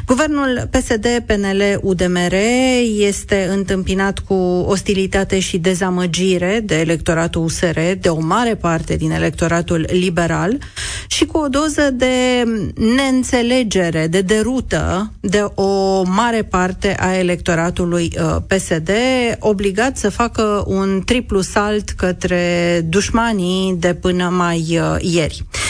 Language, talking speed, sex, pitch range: Romanian, 110 wpm, female, 175-215 Hz